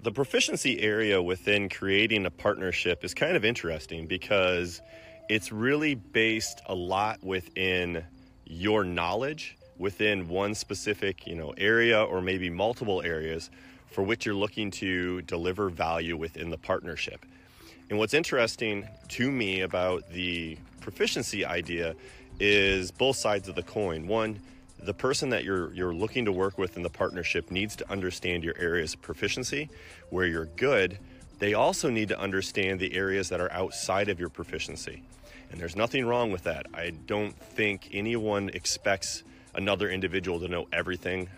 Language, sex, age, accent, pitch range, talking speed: English, male, 30-49, American, 90-105 Hz, 155 wpm